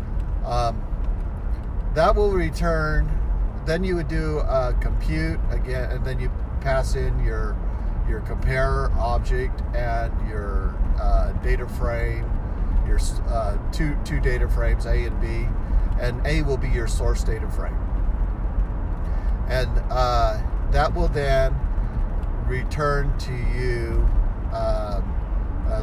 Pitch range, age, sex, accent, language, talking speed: 85-115 Hz, 50-69, male, American, English, 125 wpm